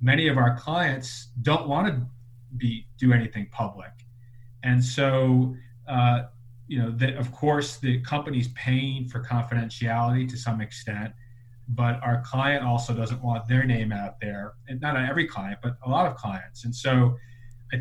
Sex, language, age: male, English, 30-49